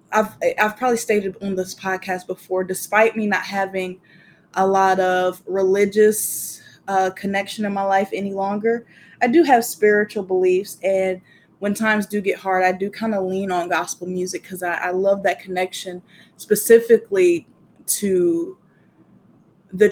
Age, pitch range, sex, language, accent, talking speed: 20-39, 185-210 Hz, female, English, American, 155 wpm